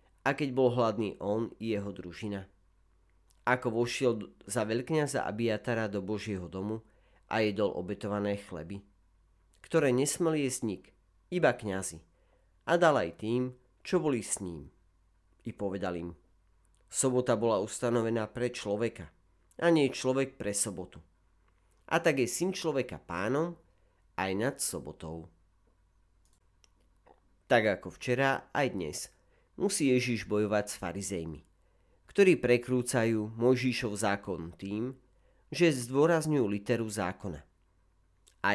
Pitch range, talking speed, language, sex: 90-125 Hz, 115 wpm, Slovak, male